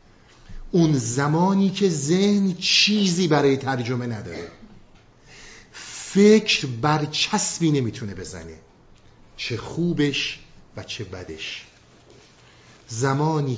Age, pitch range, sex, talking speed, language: 50-69, 110-145 Hz, male, 80 wpm, Persian